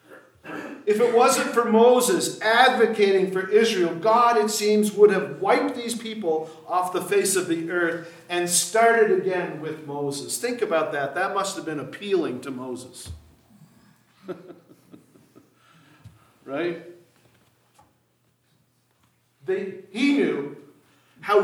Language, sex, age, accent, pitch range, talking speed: English, male, 50-69, American, 145-210 Hz, 115 wpm